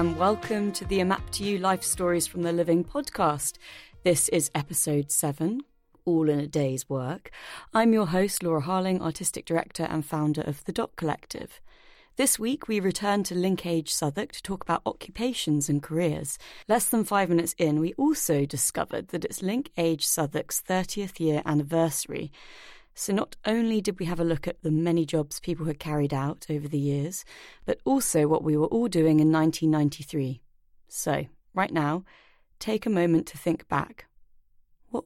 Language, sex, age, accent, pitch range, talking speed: English, female, 30-49, British, 155-200 Hz, 175 wpm